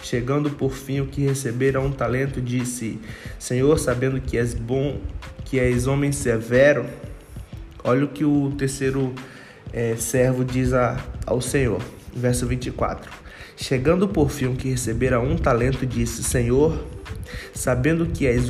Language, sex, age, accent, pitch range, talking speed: Portuguese, male, 20-39, Brazilian, 115-140 Hz, 135 wpm